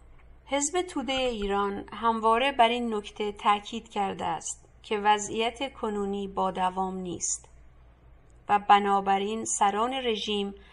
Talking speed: 110 wpm